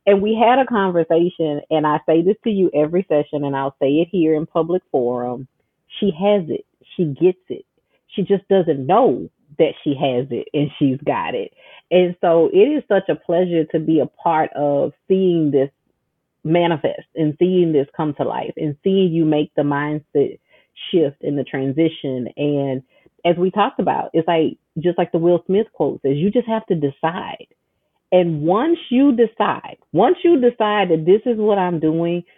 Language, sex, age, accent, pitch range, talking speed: English, female, 40-59, American, 150-195 Hz, 190 wpm